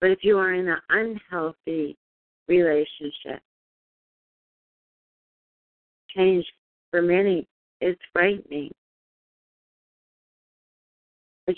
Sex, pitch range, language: female, 155-190 Hz, English